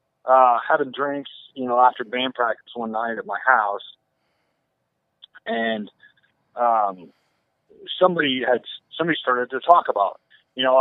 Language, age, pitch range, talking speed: English, 30-49, 110-135 Hz, 135 wpm